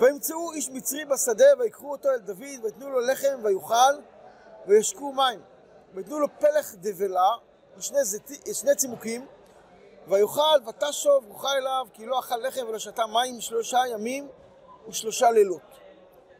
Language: Hebrew